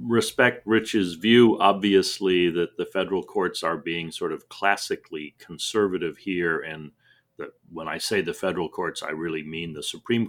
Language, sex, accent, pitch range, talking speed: English, male, American, 85-105 Hz, 155 wpm